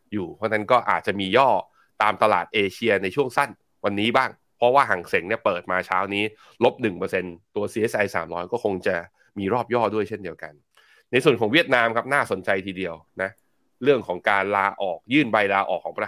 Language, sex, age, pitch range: Thai, male, 20-39, 95-120 Hz